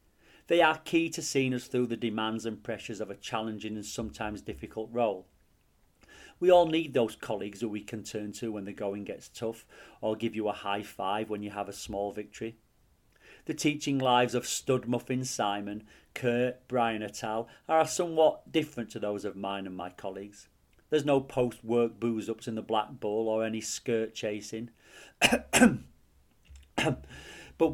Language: English